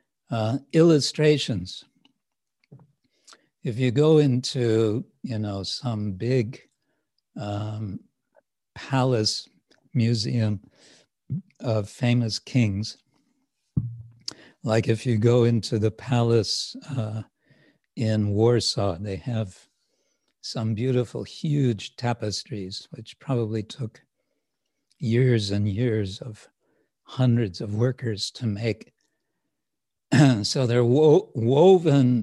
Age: 60-79